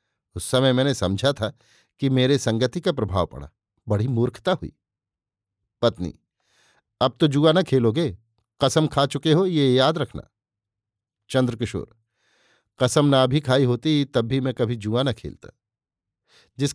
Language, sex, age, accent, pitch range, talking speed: Hindi, male, 50-69, native, 110-135 Hz, 145 wpm